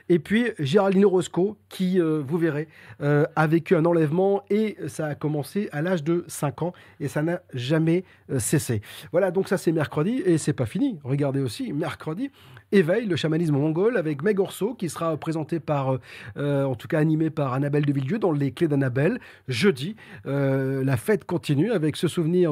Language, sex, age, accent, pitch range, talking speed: French, male, 40-59, French, 145-180 Hz, 190 wpm